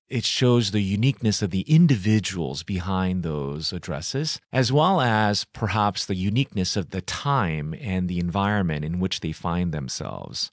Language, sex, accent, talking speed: English, male, American, 155 wpm